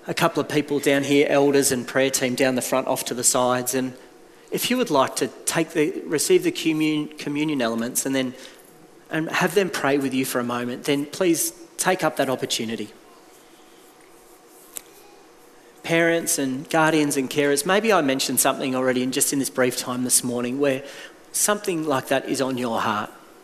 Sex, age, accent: male, 40-59, Australian